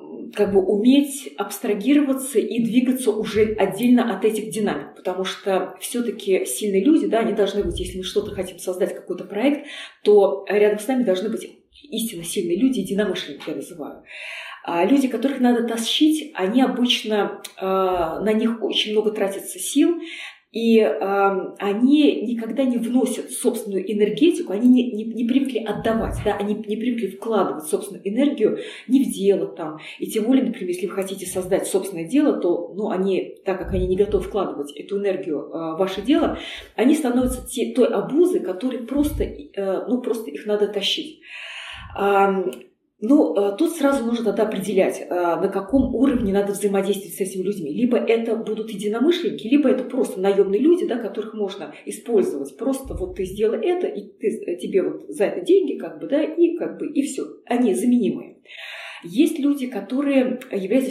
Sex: female